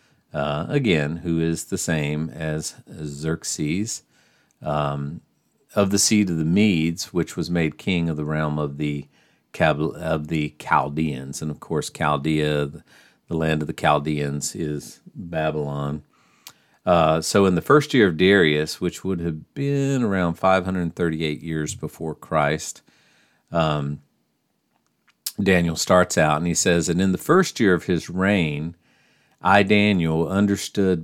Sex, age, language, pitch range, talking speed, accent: male, 50-69, English, 75-85 Hz, 145 wpm, American